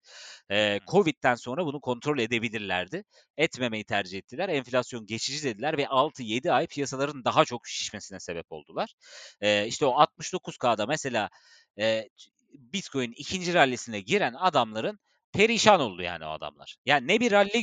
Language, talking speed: Turkish, 140 wpm